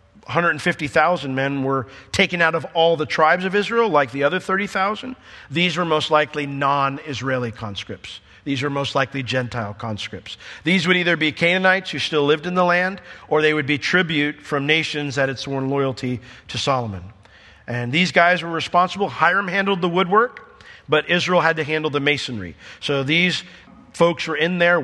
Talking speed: 175 wpm